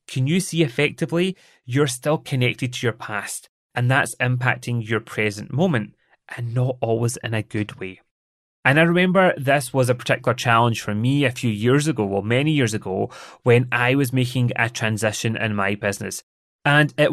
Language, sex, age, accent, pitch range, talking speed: English, male, 30-49, British, 115-140 Hz, 180 wpm